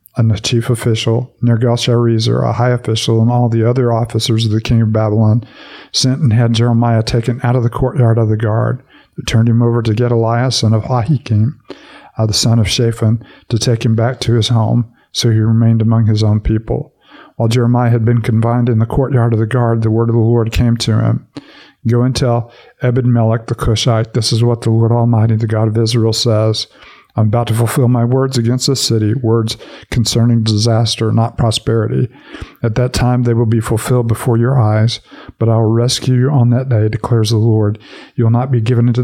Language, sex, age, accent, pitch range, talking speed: English, male, 50-69, American, 110-120 Hz, 210 wpm